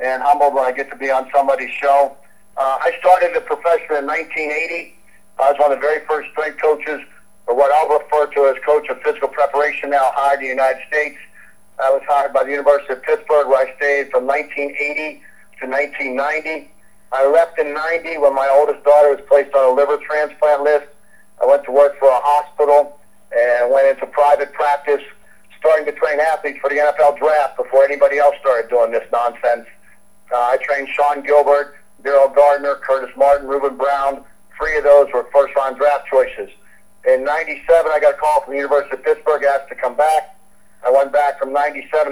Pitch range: 140-150 Hz